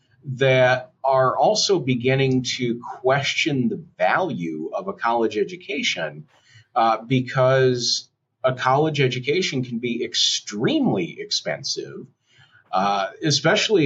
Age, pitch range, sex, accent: 40-59, 115-135 Hz, male, American